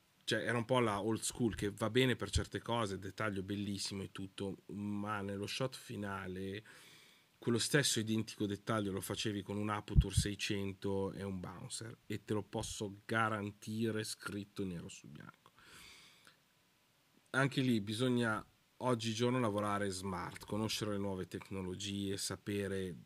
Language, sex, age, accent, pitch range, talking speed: Italian, male, 30-49, native, 95-115 Hz, 140 wpm